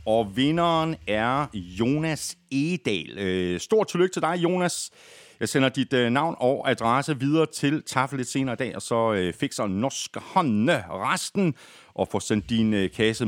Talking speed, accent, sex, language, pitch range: 155 wpm, native, male, Danish, 100-155 Hz